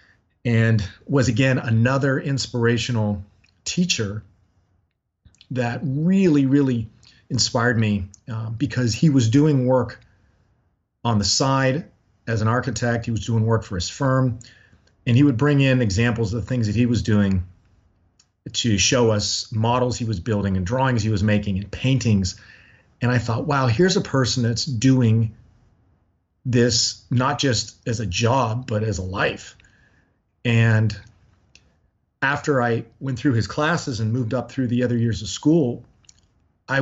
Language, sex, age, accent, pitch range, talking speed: English, male, 30-49, American, 105-130 Hz, 150 wpm